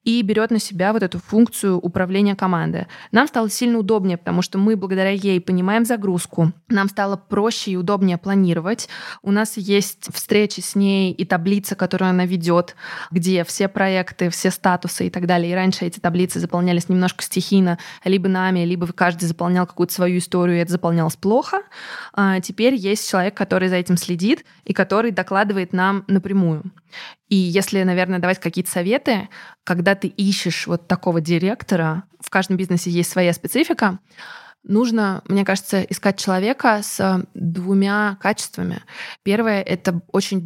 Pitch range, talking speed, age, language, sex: 180-205 Hz, 155 wpm, 20-39, Russian, female